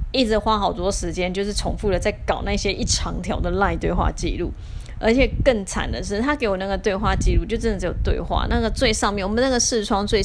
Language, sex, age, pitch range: Chinese, female, 20-39, 180-245 Hz